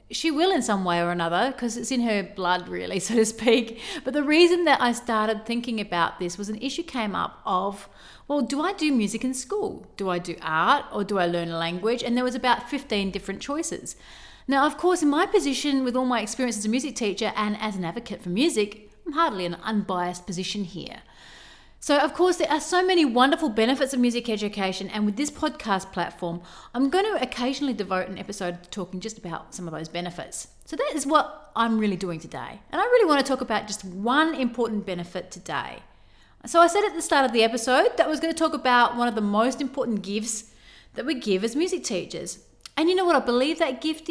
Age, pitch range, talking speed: 30-49, 200-295 Hz, 230 wpm